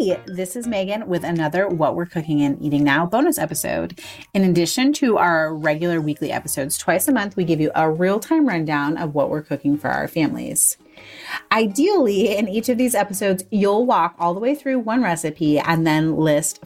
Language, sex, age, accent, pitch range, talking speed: English, female, 30-49, American, 165-230 Hz, 190 wpm